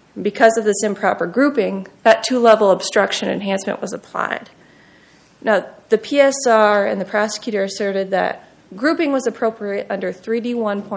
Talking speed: 130 wpm